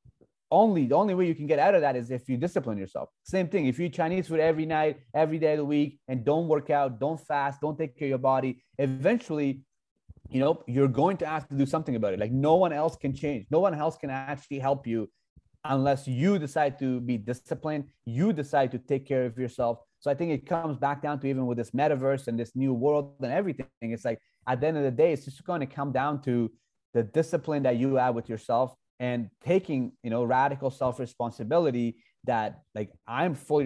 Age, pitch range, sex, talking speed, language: 30-49, 120-155 Hz, male, 230 wpm, English